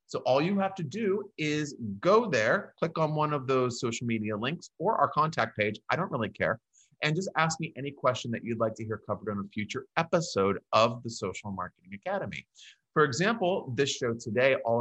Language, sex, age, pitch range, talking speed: English, male, 30-49, 110-140 Hz, 210 wpm